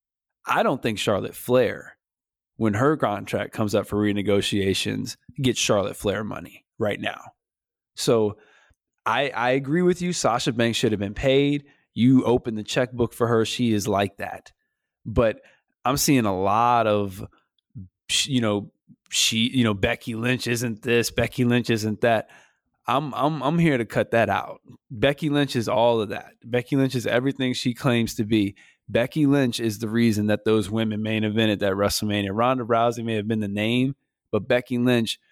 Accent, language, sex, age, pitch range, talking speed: American, English, male, 20-39, 105-125 Hz, 180 wpm